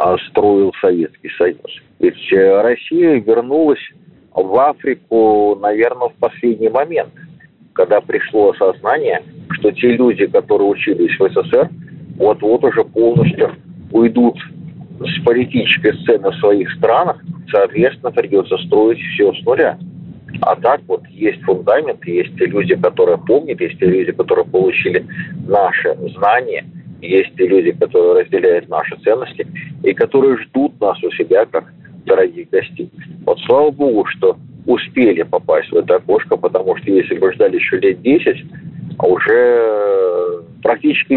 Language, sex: Russian, male